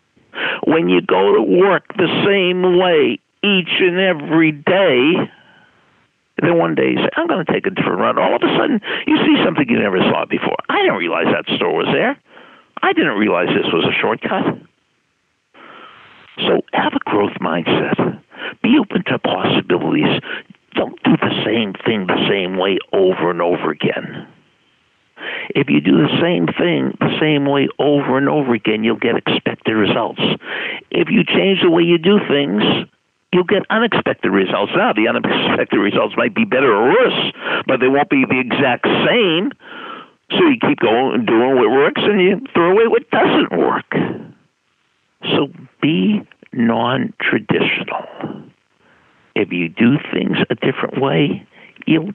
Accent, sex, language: American, male, English